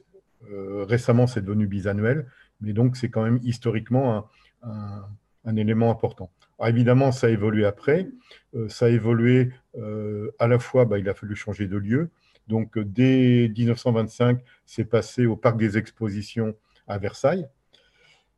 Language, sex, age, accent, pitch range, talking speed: French, male, 50-69, French, 110-130 Hz, 145 wpm